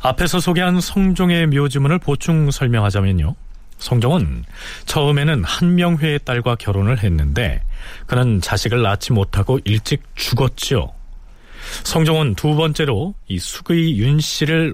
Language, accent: Korean, native